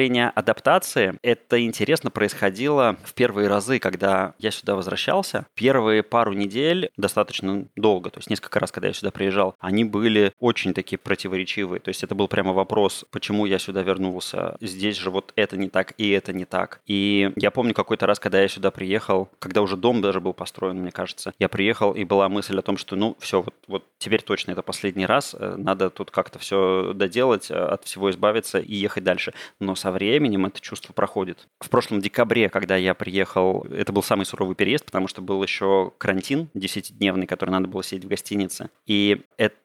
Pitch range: 95-110 Hz